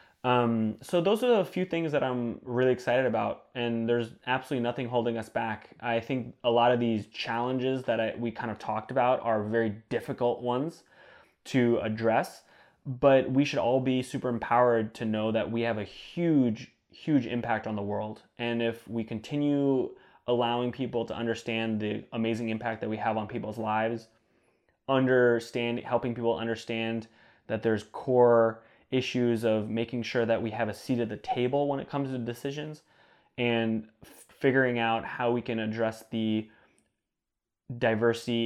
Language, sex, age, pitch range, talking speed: English, male, 20-39, 115-135 Hz, 165 wpm